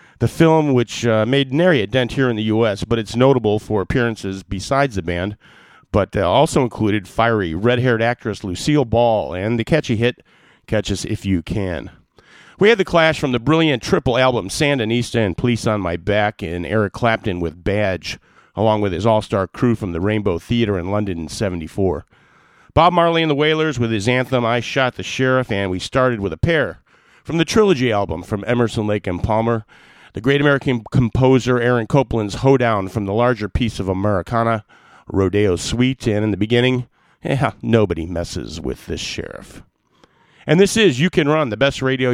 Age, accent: 40-59, American